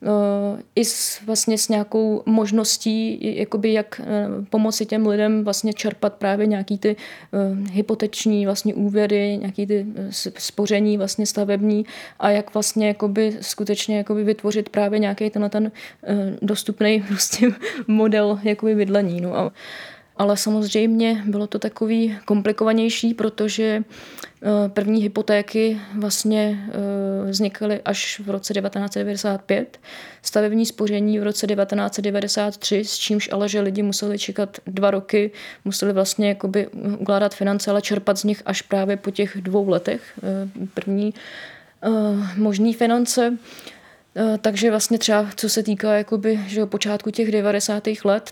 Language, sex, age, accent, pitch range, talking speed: Czech, female, 20-39, native, 200-215 Hz, 125 wpm